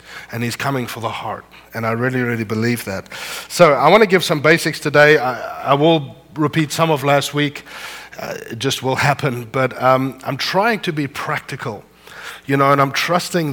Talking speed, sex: 200 wpm, male